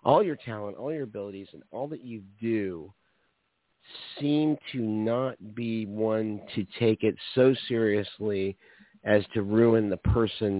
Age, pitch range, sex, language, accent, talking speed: 50-69, 100-120 Hz, male, English, American, 145 wpm